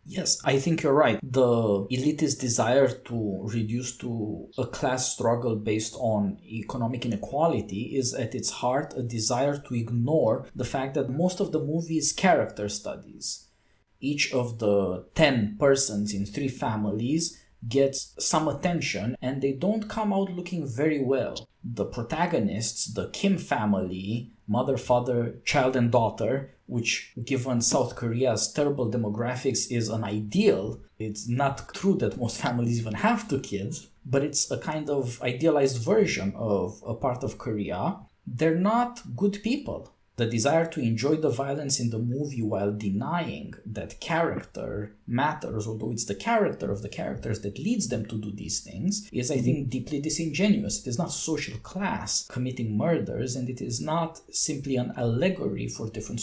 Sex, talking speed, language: male, 160 wpm, English